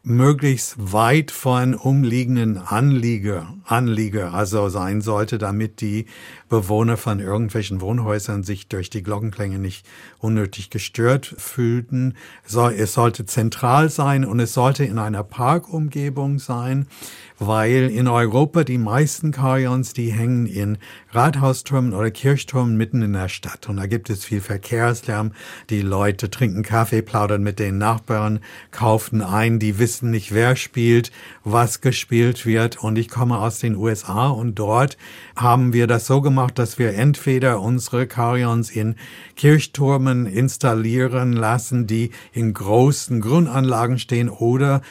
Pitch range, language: 110-130 Hz, German